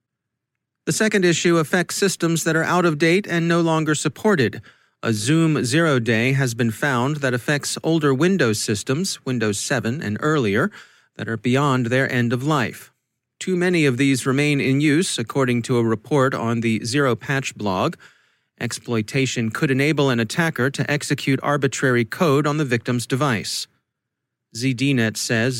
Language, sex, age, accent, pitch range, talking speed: English, male, 40-59, American, 125-160 Hz, 155 wpm